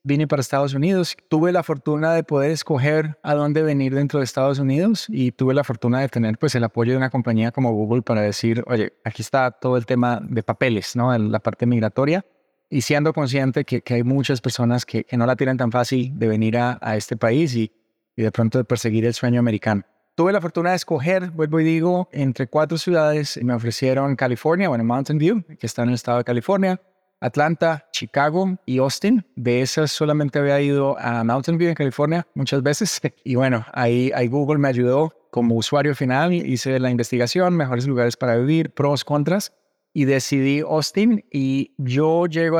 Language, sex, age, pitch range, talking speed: Spanish, male, 20-39, 120-155 Hz, 200 wpm